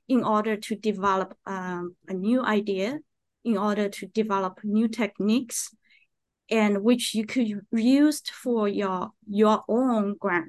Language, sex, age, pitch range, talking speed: English, female, 20-39, 200-245 Hz, 135 wpm